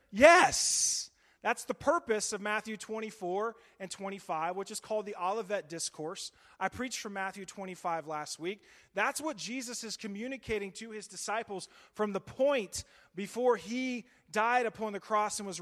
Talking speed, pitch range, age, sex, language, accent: 160 wpm, 160-215 Hz, 30-49, male, English, American